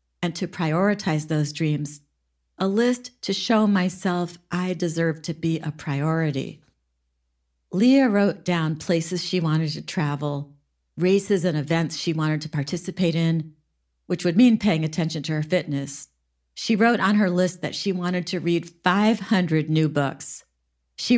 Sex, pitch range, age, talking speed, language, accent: female, 145-190 Hz, 50-69, 150 wpm, English, American